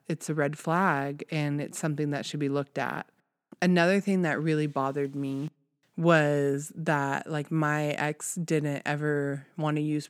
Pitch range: 140-155 Hz